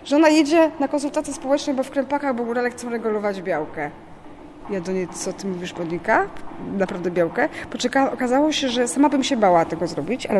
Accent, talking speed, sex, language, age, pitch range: native, 195 wpm, female, Polish, 20-39, 205-275 Hz